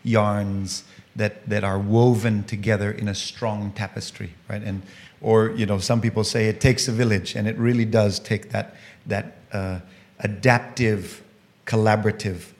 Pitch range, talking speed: 105-120 Hz, 150 wpm